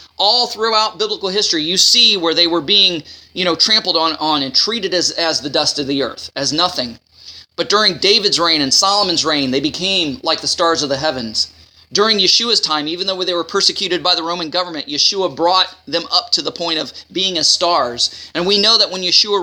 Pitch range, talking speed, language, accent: 145-210 Hz, 215 wpm, English, American